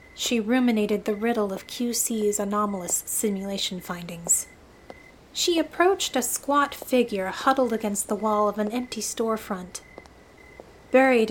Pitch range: 205-250 Hz